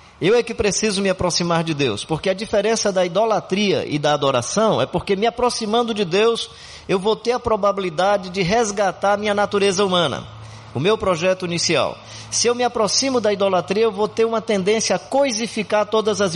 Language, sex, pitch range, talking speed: Portuguese, male, 140-205 Hz, 190 wpm